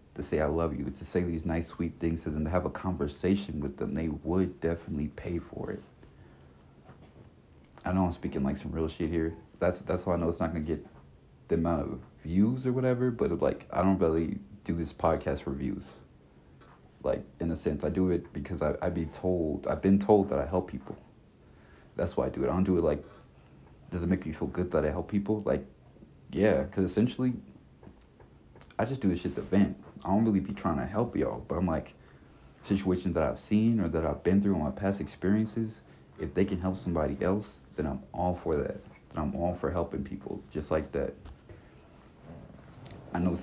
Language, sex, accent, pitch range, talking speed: English, male, American, 75-100 Hz, 220 wpm